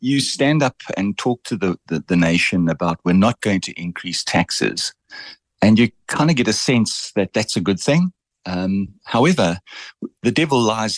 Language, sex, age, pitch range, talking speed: English, male, 50-69, 90-120 Hz, 185 wpm